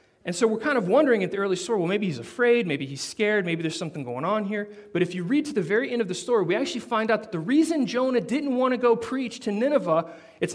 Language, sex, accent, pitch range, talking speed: English, male, American, 180-260 Hz, 285 wpm